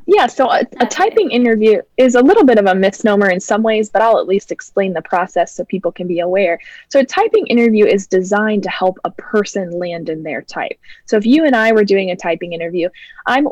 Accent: American